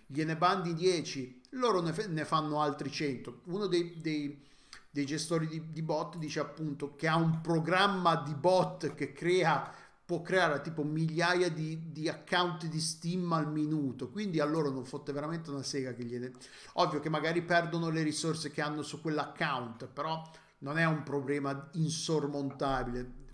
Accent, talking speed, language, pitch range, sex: native, 165 wpm, Italian, 140-165 Hz, male